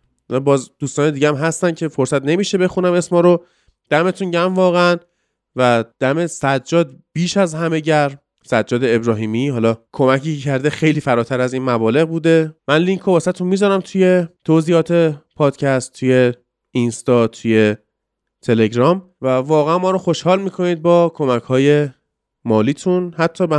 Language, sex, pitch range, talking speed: Persian, male, 125-170 Hz, 135 wpm